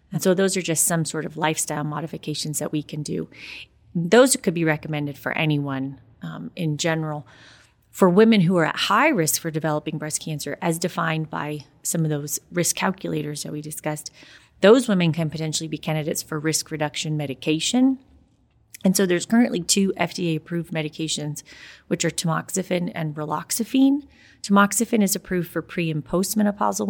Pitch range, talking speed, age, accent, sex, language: 150-190 Hz, 165 wpm, 30-49, American, female, English